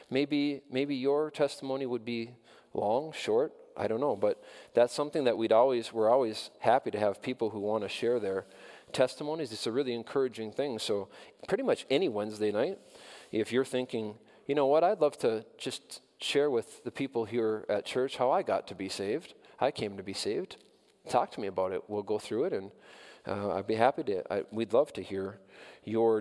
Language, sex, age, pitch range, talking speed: English, male, 40-59, 110-145 Hz, 205 wpm